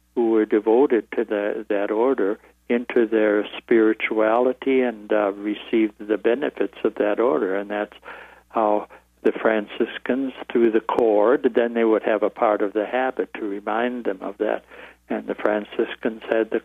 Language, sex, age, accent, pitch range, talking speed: English, male, 60-79, American, 105-120 Hz, 160 wpm